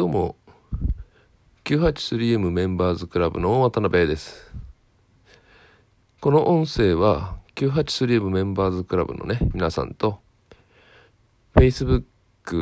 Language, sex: Japanese, male